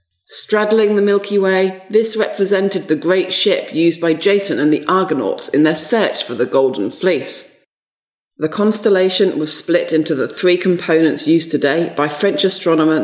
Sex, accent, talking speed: female, British, 160 wpm